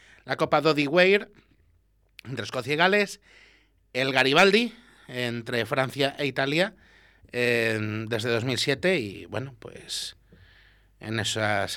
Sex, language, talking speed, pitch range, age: male, Spanish, 105 wpm, 100-160 Hz, 30-49